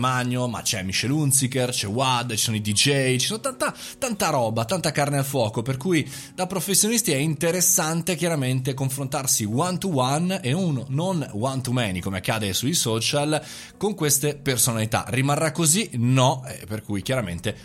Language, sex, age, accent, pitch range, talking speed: Italian, male, 20-39, native, 115-150 Hz, 170 wpm